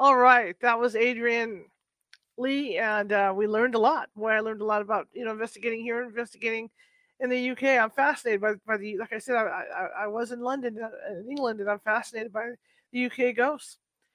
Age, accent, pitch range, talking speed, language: 40-59, American, 215-270 Hz, 210 wpm, English